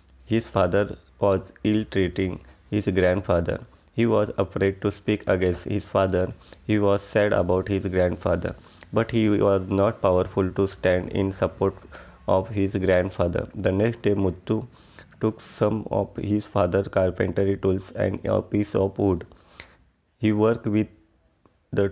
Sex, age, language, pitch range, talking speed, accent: male, 20-39, English, 90-105 Hz, 140 wpm, Indian